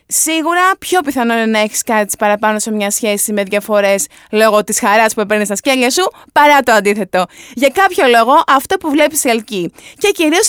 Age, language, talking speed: 20-39, Greek, 190 wpm